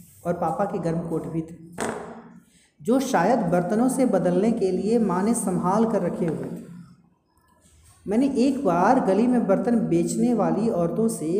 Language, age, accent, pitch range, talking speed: Hindi, 30-49, native, 185-240 Hz, 165 wpm